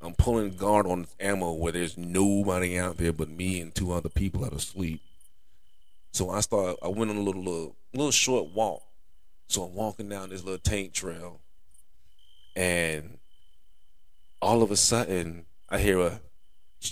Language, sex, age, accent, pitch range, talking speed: English, male, 30-49, American, 85-100 Hz, 170 wpm